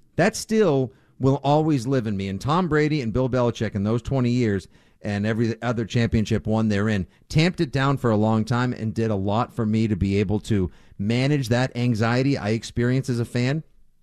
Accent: American